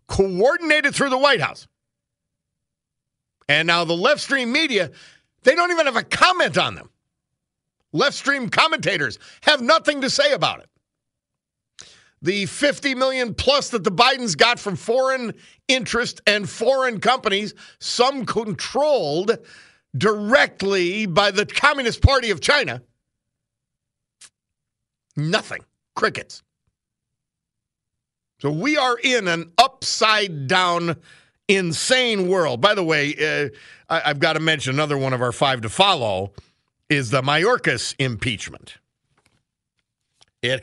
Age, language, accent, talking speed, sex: 50-69, English, American, 120 wpm, male